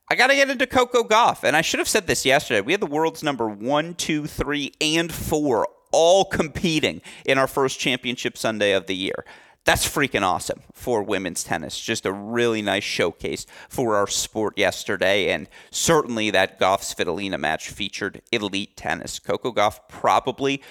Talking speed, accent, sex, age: 175 wpm, American, male, 30-49